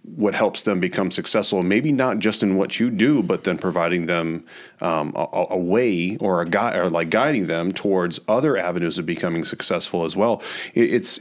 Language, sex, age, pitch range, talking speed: English, male, 30-49, 90-105 Hz, 200 wpm